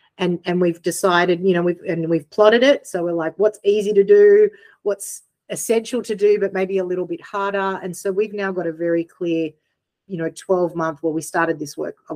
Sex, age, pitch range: female, 40-59, 160-195 Hz